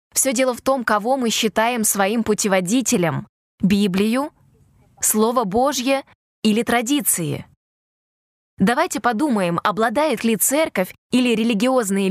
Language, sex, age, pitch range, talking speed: Russian, female, 20-39, 200-250 Hz, 105 wpm